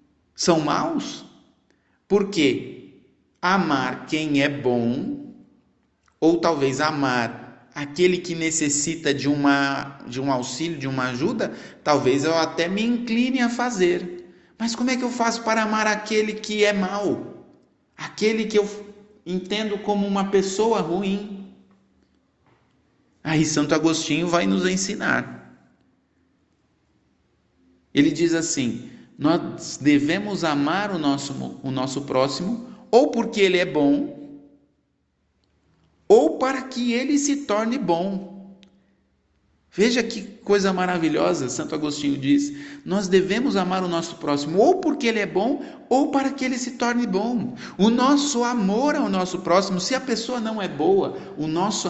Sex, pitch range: male, 150-235 Hz